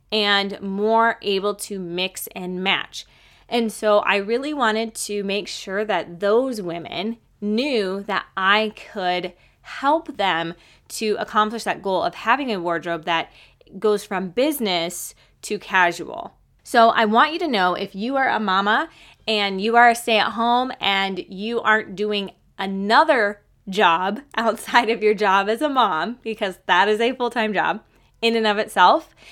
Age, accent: 20-39, American